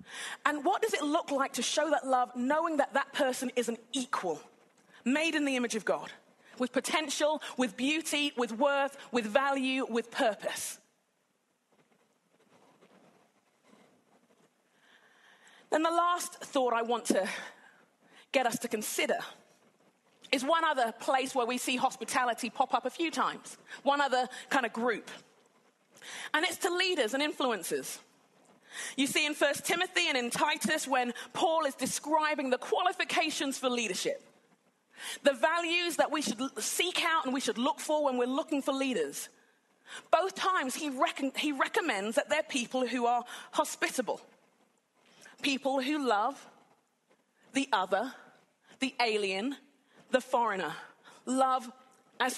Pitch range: 245-305 Hz